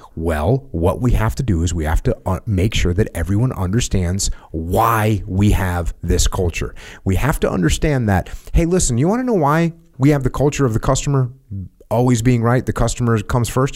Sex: male